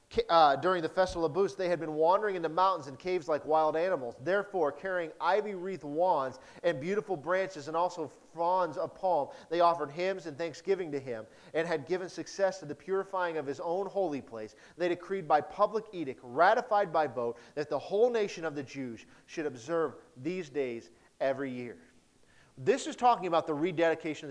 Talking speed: 195 wpm